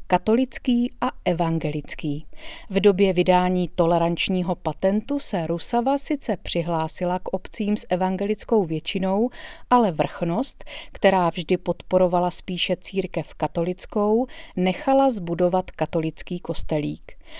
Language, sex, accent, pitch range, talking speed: Czech, female, native, 170-225 Hz, 100 wpm